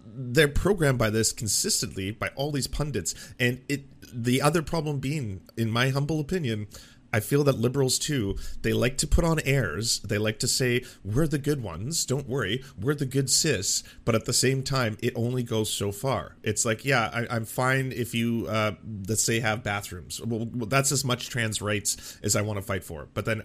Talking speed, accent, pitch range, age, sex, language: 205 wpm, American, 105-135 Hz, 30-49, male, English